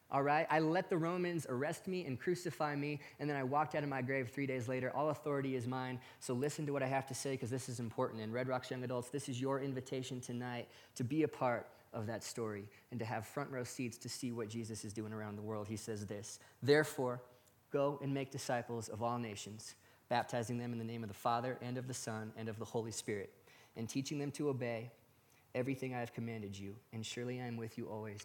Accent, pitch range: American, 115-140 Hz